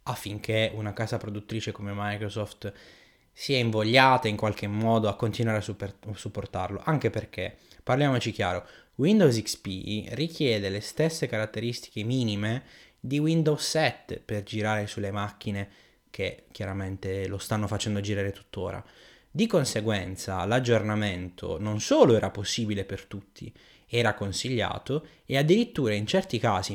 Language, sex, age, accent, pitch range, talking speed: Italian, male, 20-39, native, 100-120 Hz, 130 wpm